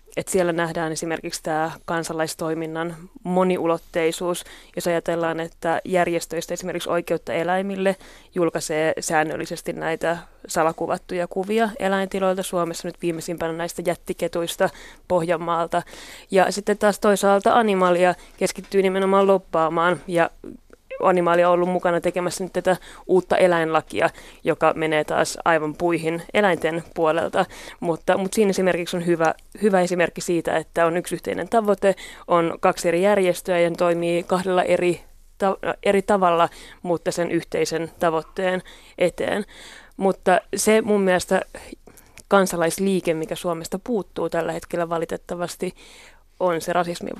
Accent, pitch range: native, 170-185 Hz